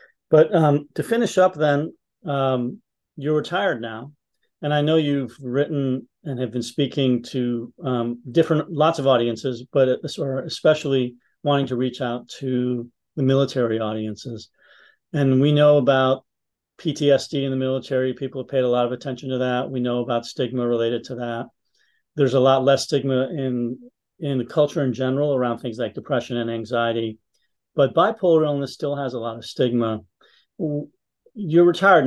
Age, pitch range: 40-59, 125-150 Hz